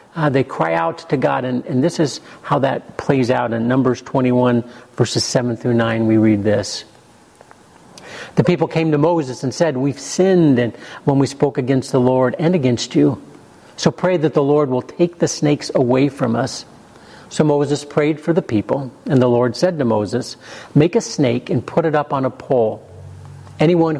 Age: 50-69